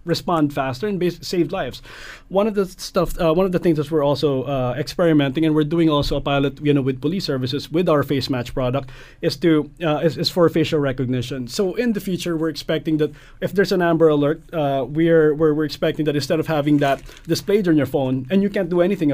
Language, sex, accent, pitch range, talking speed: English, male, Filipino, 140-170 Hz, 235 wpm